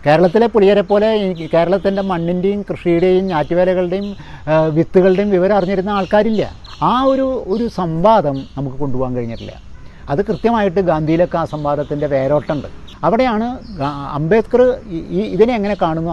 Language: Malayalam